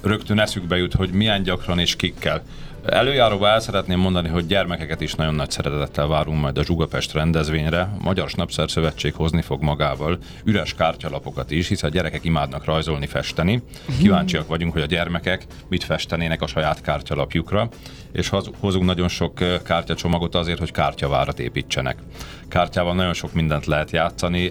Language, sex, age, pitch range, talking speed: Hungarian, male, 40-59, 80-95 Hz, 150 wpm